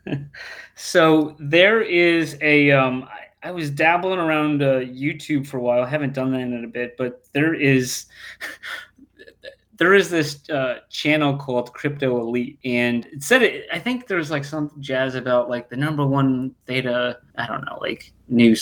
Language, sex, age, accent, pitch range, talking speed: English, male, 30-49, American, 125-155 Hz, 170 wpm